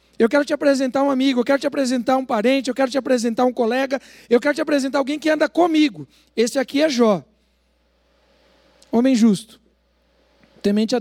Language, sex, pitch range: Portuguese, male, 195-260 Hz